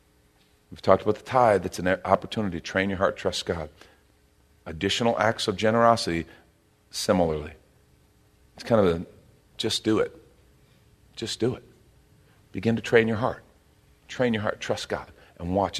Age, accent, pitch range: 40-59, American, 100-125 Hz